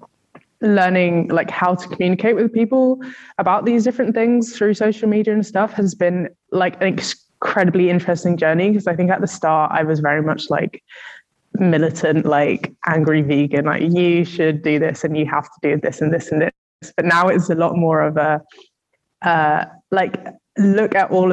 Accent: British